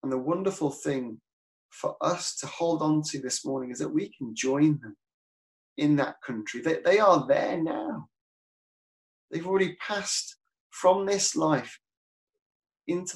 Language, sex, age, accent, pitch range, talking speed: English, male, 30-49, British, 120-170 Hz, 150 wpm